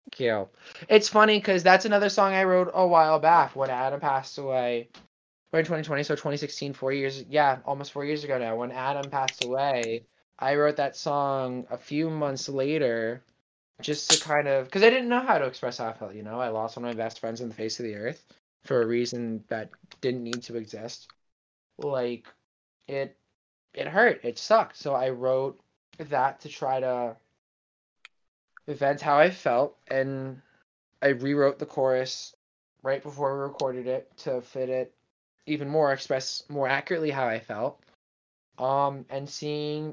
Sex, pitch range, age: male, 115-145 Hz, 20-39